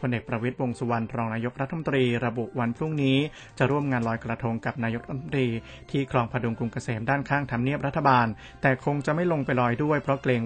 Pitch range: 120-140 Hz